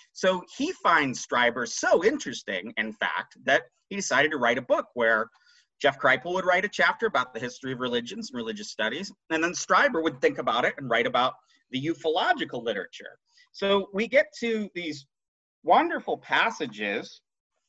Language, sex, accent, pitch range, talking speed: English, male, American, 145-235 Hz, 170 wpm